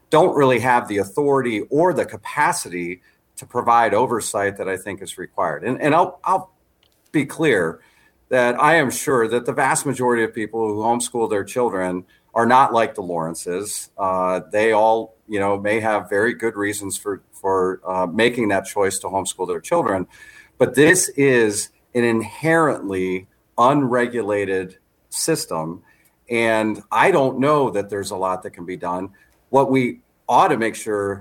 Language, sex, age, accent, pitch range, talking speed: English, male, 40-59, American, 95-125 Hz, 165 wpm